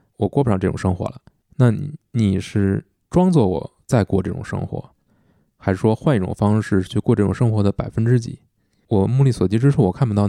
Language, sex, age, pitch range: Chinese, male, 20-39, 100-135 Hz